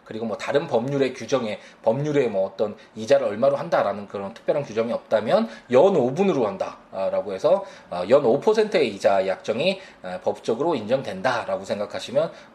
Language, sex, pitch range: Korean, male, 110-185 Hz